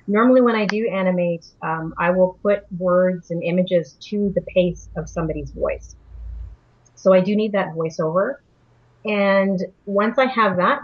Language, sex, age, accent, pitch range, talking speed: English, female, 30-49, American, 170-200 Hz, 160 wpm